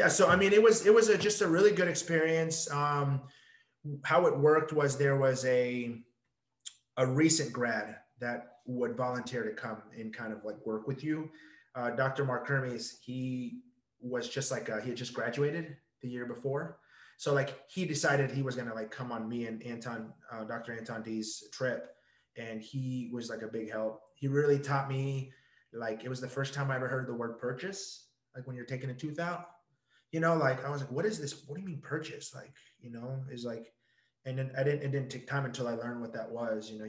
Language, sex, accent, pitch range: English, male, American, 115-145 Hz